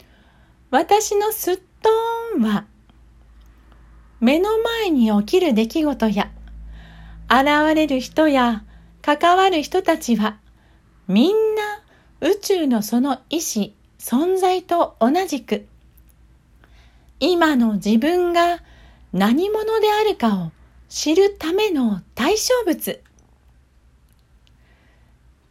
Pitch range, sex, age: 210-345 Hz, female, 40-59